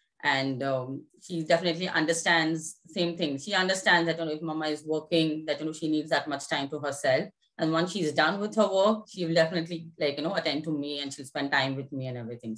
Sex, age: female, 20-39